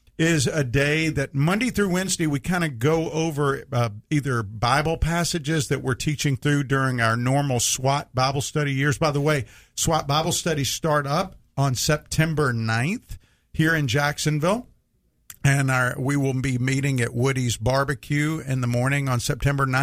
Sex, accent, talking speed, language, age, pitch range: male, American, 165 wpm, English, 50-69, 130-160 Hz